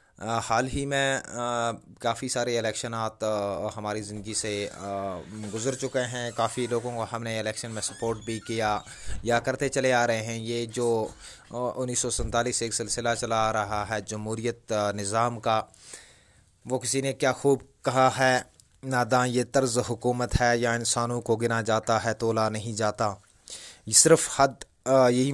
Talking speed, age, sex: 160 wpm, 20-39, male